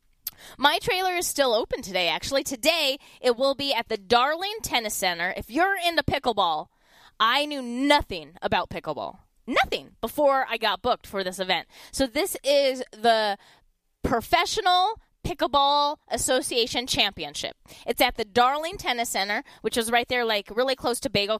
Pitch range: 220-305 Hz